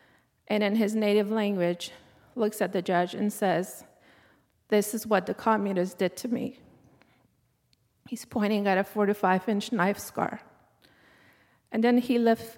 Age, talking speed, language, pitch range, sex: 40-59, 155 wpm, English, 205-245 Hz, female